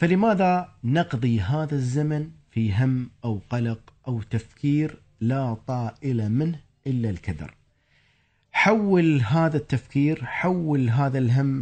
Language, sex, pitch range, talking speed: Arabic, male, 115-155 Hz, 110 wpm